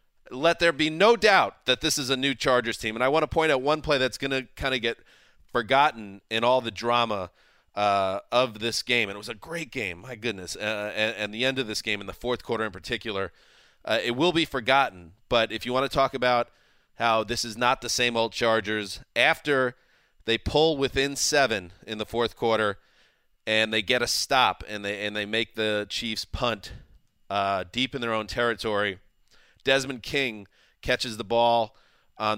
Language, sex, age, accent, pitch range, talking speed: English, male, 30-49, American, 110-140 Hz, 210 wpm